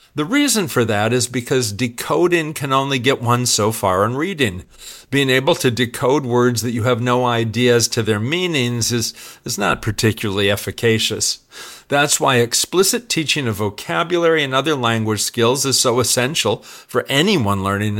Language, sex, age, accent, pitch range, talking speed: English, male, 50-69, American, 115-140 Hz, 165 wpm